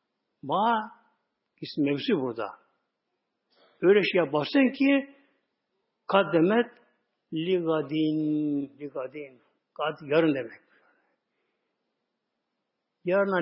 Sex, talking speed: male, 65 wpm